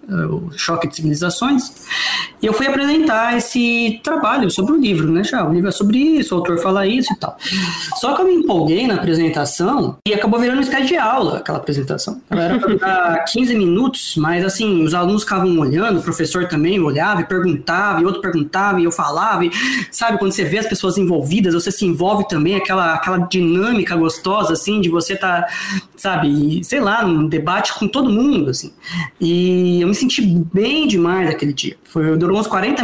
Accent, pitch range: Brazilian, 175-230 Hz